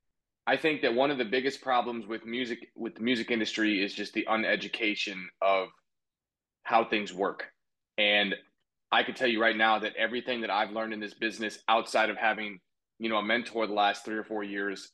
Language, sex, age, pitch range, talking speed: English, male, 20-39, 105-120 Hz, 200 wpm